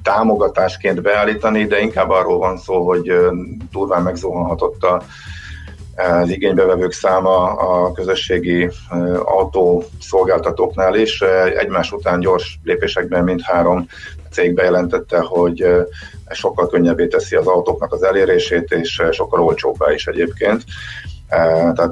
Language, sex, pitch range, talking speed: Hungarian, male, 85-105 Hz, 105 wpm